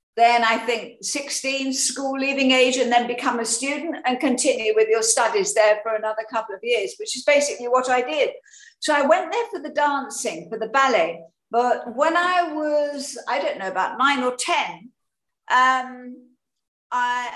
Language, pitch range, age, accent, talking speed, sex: English, 240-305 Hz, 50-69, British, 180 wpm, female